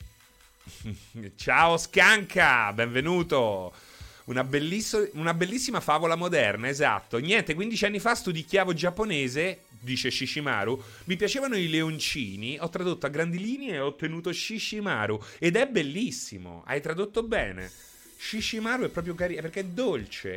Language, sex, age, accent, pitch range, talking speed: Italian, male, 30-49, native, 115-190 Hz, 125 wpm